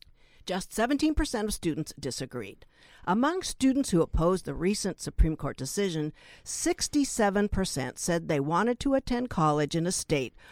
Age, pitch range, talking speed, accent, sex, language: 60-79, 150-220 Hz, 135 wpm, American, female, English